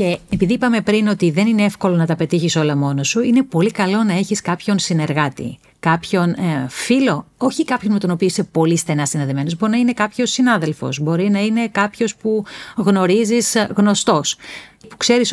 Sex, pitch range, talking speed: female, 165-220 Hz, 185 wpm